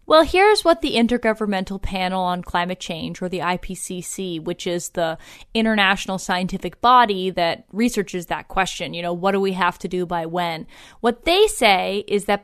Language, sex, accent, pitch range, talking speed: English, female, American, 185-245 Hz, 180 wpm